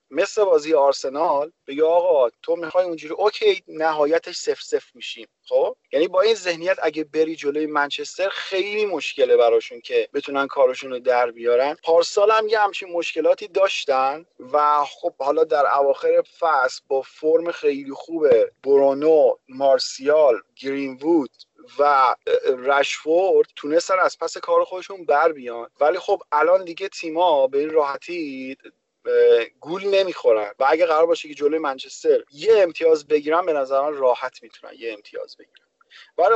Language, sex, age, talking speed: Persian, male, 30-49, 140 wpm